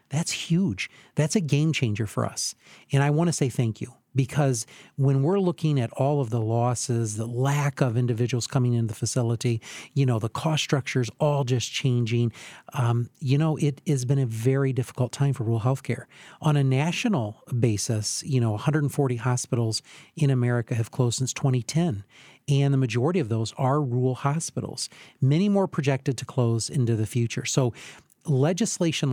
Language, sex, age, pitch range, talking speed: English, male, 40-59, 120-140 Hz, 175 wpm